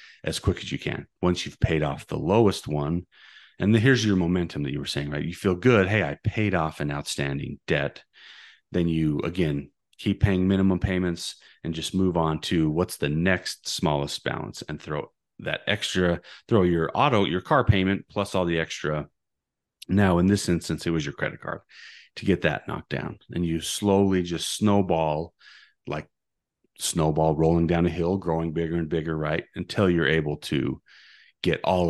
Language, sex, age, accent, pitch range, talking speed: English, male, 30-49, American, 80-95 Hz, 185 wpm